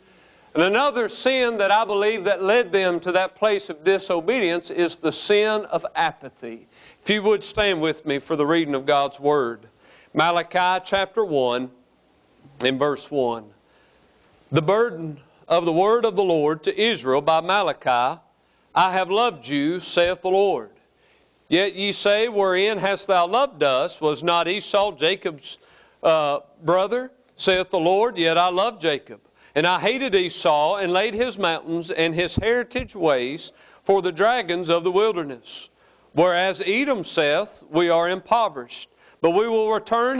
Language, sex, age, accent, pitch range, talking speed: English, male, 50-69, American, 160-215 Hz, 155 wpm